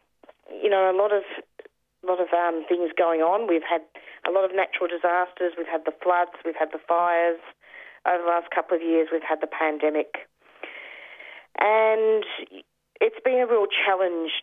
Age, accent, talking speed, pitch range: 30-49, Australian, 175 wpm, 165-200 Hz